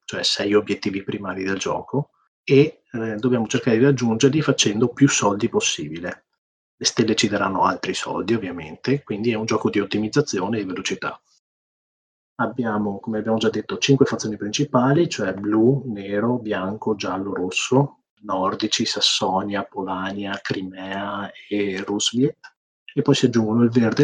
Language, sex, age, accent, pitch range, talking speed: Italian, male, 30-49, native, 105-130 Hz, 140 wpm